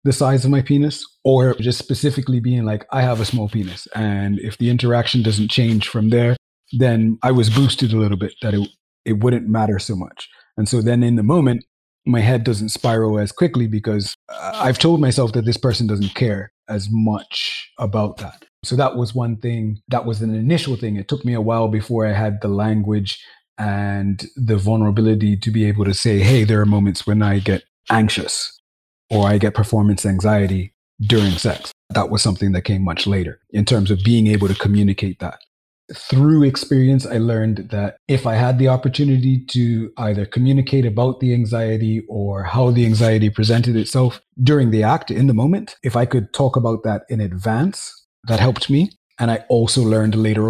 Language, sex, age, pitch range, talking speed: English, male, 30-49, 105-125 Hz, 195 wpm